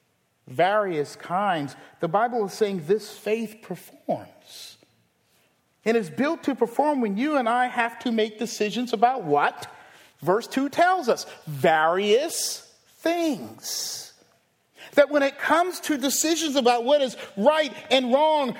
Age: 40-59